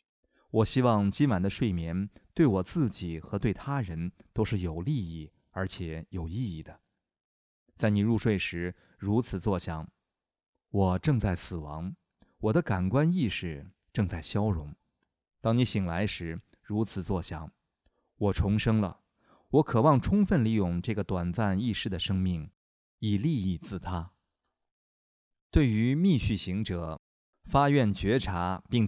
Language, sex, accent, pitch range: Chinese, male, native, 90-115 Hz